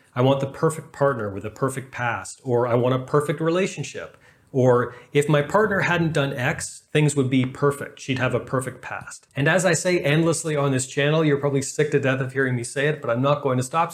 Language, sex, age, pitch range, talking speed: English, male, 30-49, 125-145 Hz, 235 wpm